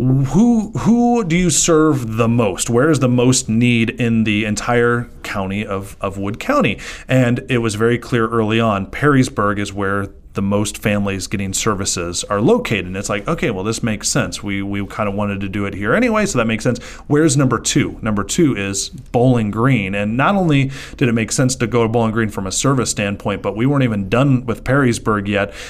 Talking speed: 210 wpm